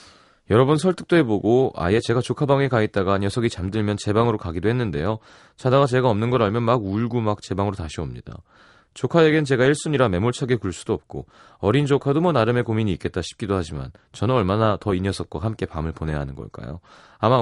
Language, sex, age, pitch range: Korean, male, 30-49, 95-135 Hz